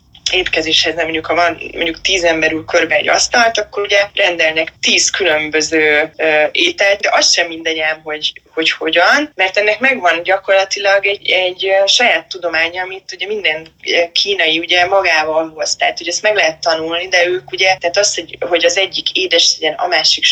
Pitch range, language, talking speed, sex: 160-180 Hz, Hungarian, 170 wpm, female